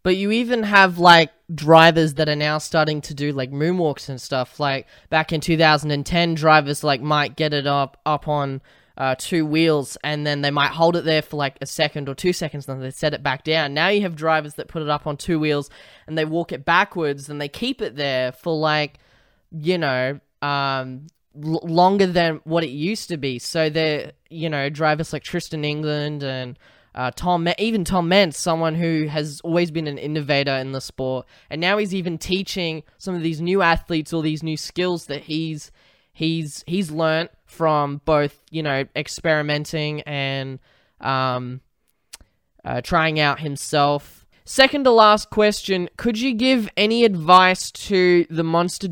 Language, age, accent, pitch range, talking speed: English, 10-29, Australian, 145-170 Hz, 185 wpm